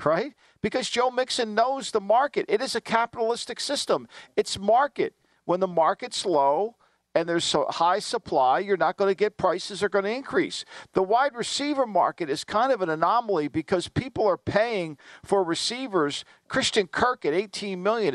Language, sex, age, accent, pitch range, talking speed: English, male, 50-69, American, 195-250 Hz, 175 wpm